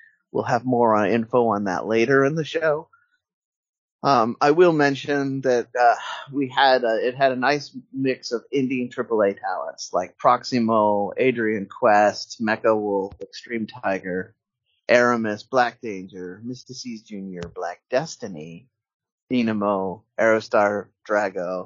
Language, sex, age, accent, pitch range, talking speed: English, male, 30-49, American, 110-135 Hz, 130 wpm